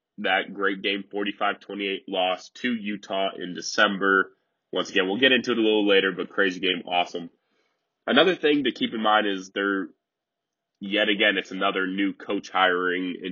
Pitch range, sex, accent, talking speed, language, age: 90-105 Hz, male, American, 170 wpm, English, 20-39